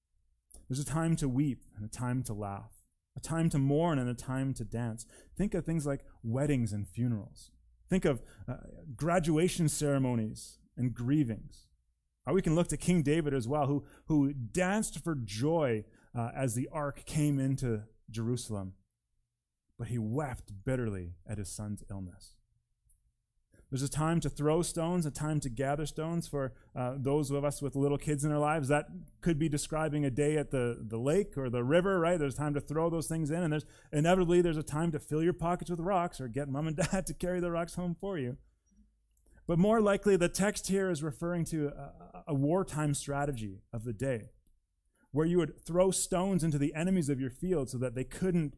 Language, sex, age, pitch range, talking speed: English, male, 30-49, 115-160 Hz, 195 wpm